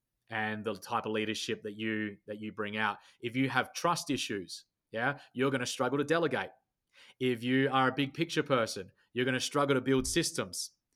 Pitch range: 115-135 Hz